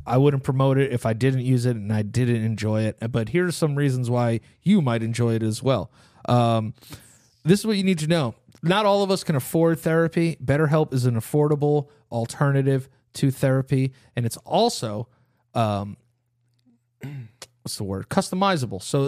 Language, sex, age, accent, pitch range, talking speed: English, male, 30-49, American, 120-155 Hz, 180 wpm